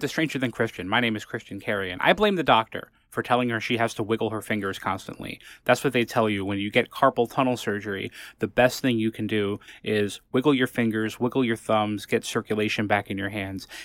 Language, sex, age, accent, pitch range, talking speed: English, male, 20-39, American, 105-125 Hz, 230 wpm